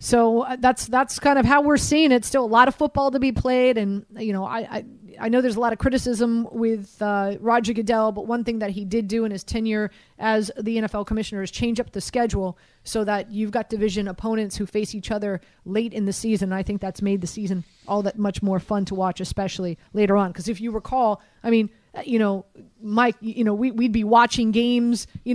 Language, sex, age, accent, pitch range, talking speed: English, female, 30-49, American, 205-245 Hz, 235 wpm